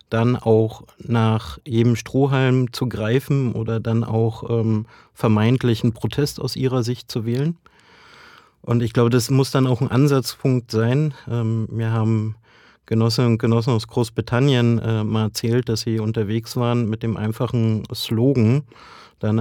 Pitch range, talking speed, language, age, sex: 115-130 Hz, 150 wpm, German, 30-49, male